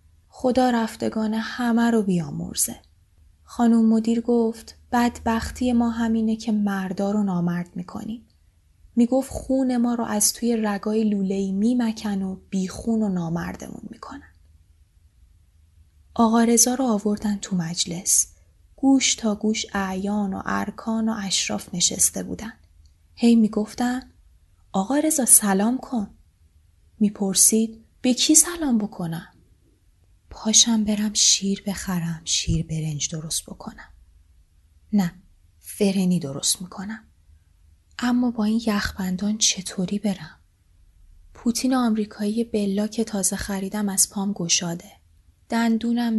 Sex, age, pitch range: female, 10-29, 145-220 Hz